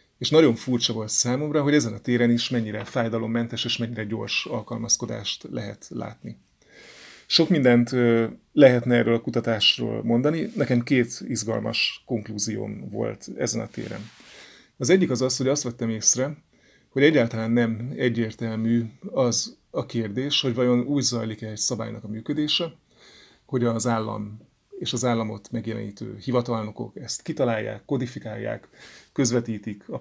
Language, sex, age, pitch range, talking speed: Hungarian, male, 30-49, 110-125 Hz, 140 wpm